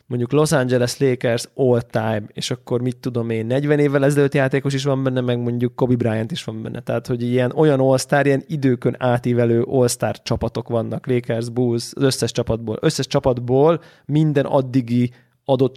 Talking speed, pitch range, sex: 175 wpm, 115-135 Hz, male